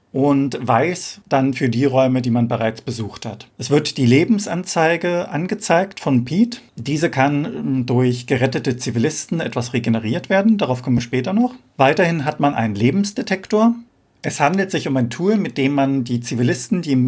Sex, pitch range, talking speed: male, 125-160 Hz, 170 wpm